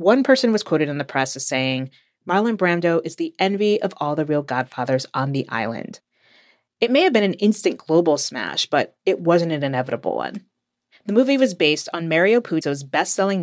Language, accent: English, American